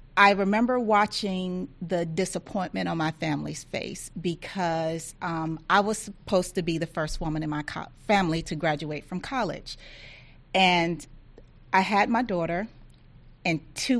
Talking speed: 140 wpm